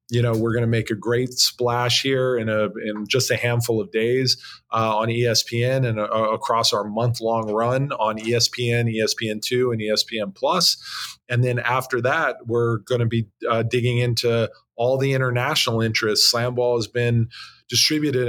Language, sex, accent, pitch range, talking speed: English, male, American, 115-125 Hz, 180 wpm